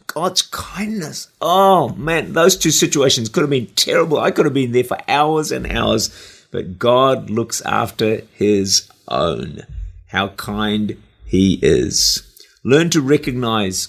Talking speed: 145 wpm